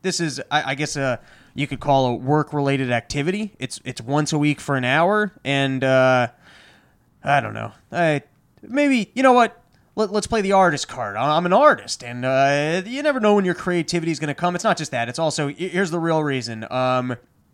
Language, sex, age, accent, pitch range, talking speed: English, male, 20-39, American, 130-170 Hz, 210 wpm